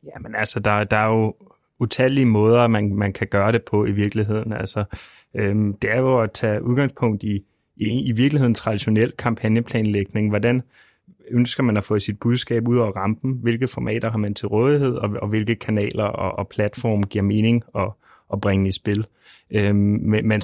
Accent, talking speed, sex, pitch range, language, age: native, 185 wpm, male, 105-120 Hz, Danish, 30-49